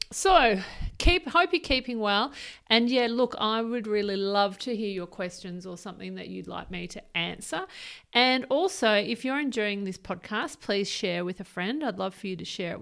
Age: 40-59